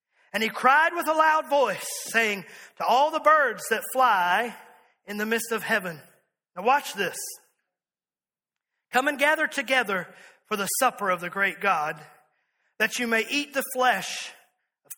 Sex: male